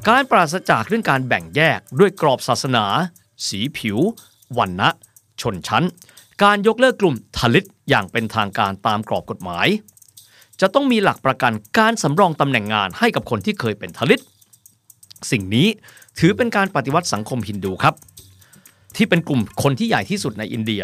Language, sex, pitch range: Thai, male, 110-175 Hz